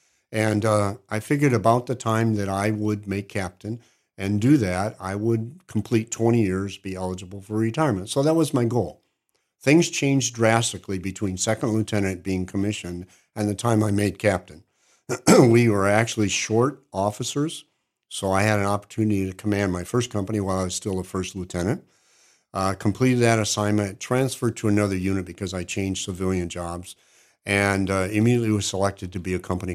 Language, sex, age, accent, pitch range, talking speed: English, male, 50-69, American, 95-115 Hz, 175 wpm